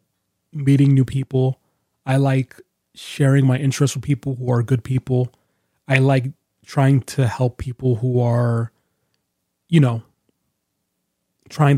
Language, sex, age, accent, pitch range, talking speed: English, male, 30-49, American, 125-145 Hz, 125 wpm